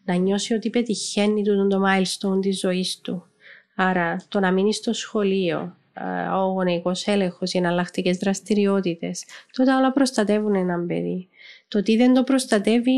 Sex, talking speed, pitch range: female, 155 wpm, 195-235 Hz